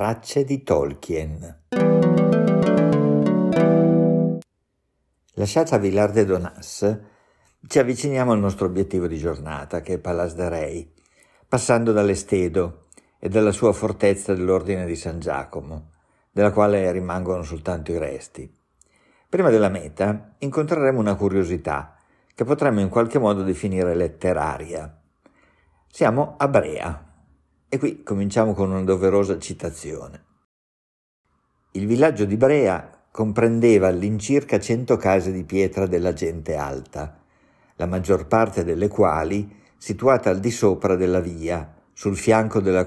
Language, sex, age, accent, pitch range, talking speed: Italian, male, 50-69, native, 85-105 Hz, 120 wpm